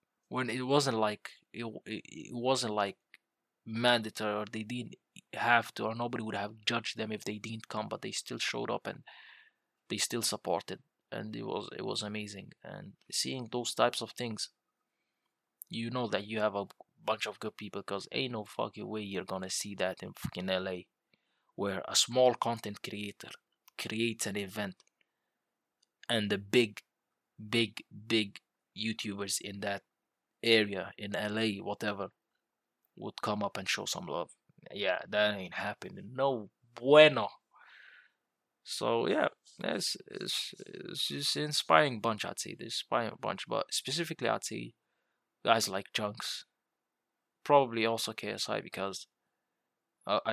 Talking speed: 150 wpm